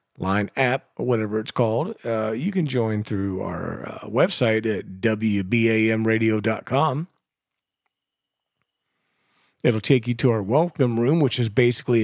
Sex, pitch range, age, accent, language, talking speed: male, 100-125 Hz, 40-59, American, English, 130 wpm